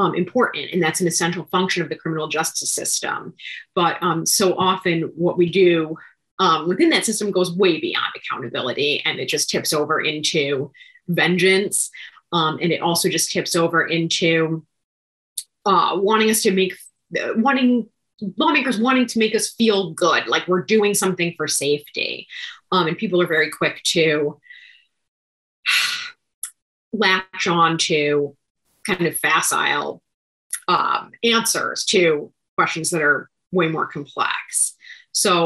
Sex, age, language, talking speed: female, 30-49, English, 140 wpm